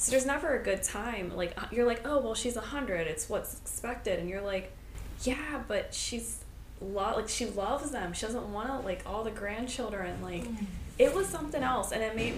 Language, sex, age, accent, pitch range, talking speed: English, female, 20-39, American, 165-205 Hz, 210 wpm